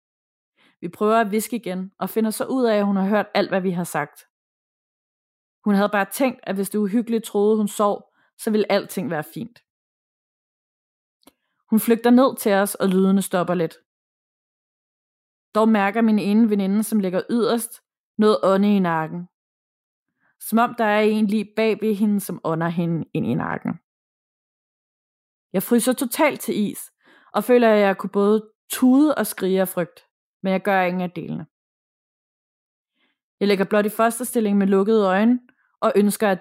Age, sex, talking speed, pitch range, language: 20-39, female, 170 wpm, 185-225 Hz, Danish